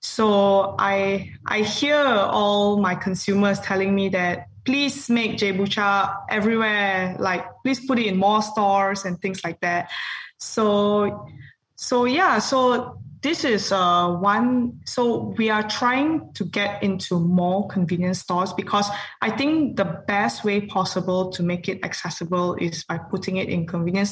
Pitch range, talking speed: 185-220 Hz, 150 wpm